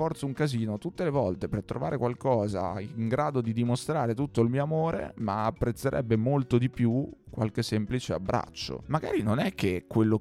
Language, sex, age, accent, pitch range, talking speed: Italian, male, 30-49, native, 95-115 Hz, 170 wpm